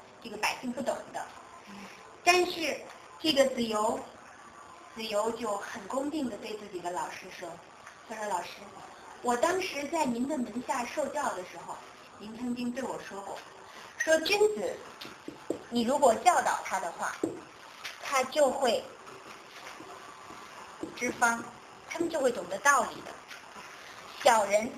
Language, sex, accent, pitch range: Chinese, male, native, 230-320 Hz